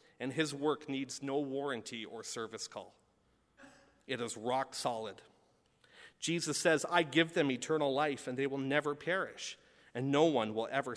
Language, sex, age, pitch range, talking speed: English, male, 40-59, 125-165 Hz, 165 wpm